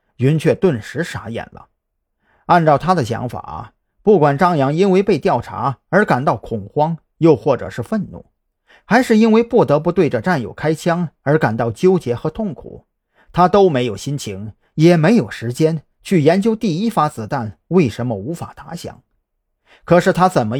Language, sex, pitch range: Chinese, male, 120-185 Hz